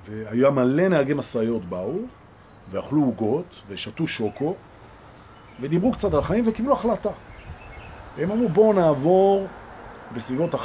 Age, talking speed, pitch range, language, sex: 40-59, 115 wpm, 110-175 Hz, Hebrew, male